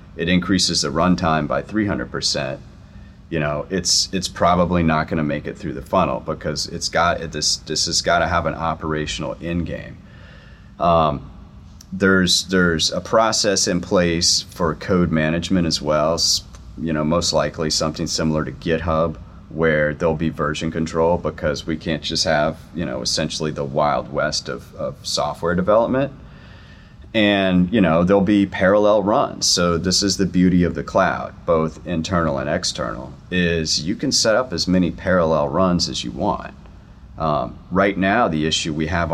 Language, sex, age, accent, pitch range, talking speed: English, male, 30-49, American, 80-90 Hz, 170 wpm